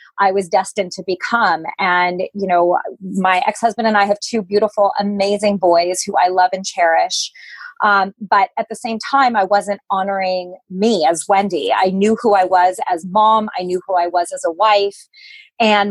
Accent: American